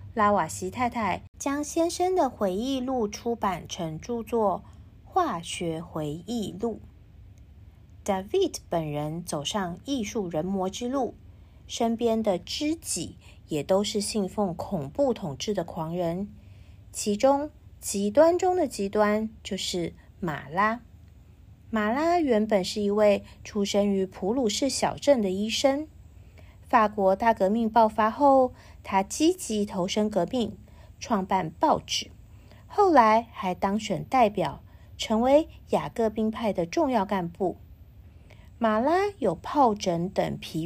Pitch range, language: 175-250 Hz, Chinese